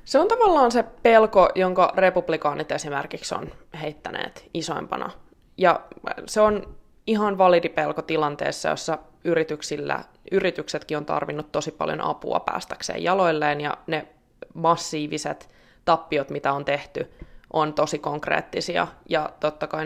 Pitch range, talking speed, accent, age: 155-190 Hz, 120 wpm, native, 20-39